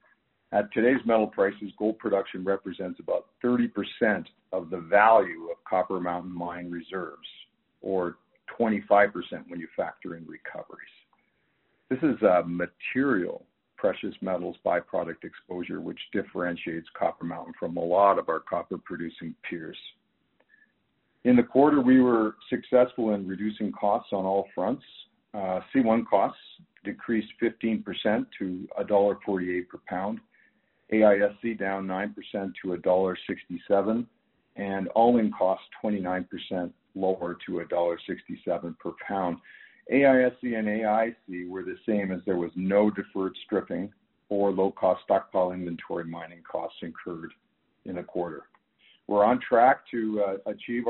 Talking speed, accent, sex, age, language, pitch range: 125 wpm, American, male, 50-69, English, 95-110 Hz